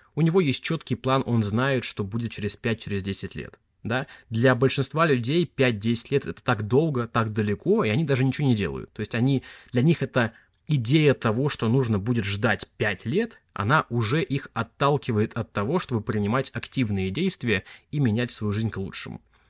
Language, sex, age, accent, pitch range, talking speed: Russian, male, 20-39, native, 105-130 Hz, 185 wpm